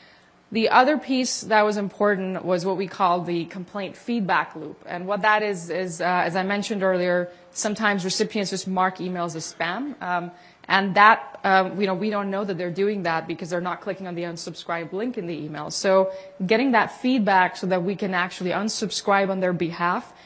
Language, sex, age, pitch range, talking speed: English, female, 20-39, 180-215 Hz, 200 wpm